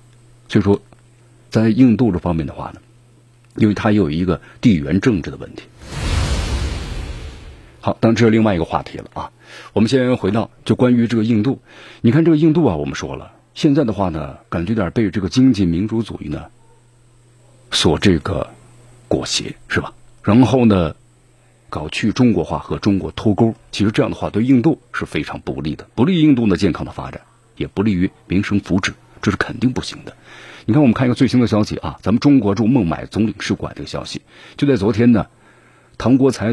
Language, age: Chinese, 50-69